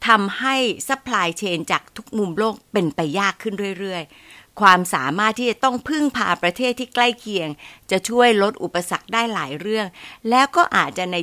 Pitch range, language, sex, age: 170-230 Hz, Thai, female, 60-79